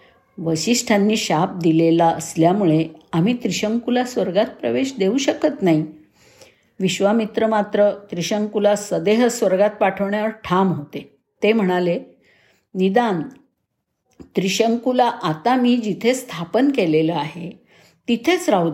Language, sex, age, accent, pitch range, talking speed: Marathi, female, 50-69, native, 175-230 Hz, 100 wpm